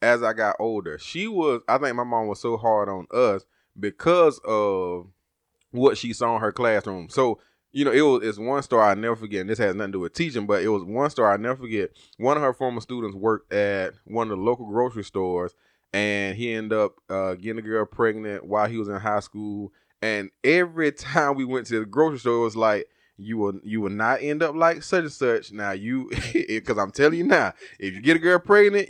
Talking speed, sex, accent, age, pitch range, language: 235 wpm, male, American, 20-39, 105-160 Hz, English